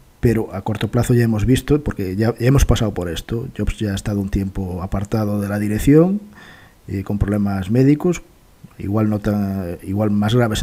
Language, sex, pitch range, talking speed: English, male, 95-120 Hz, 185 wpm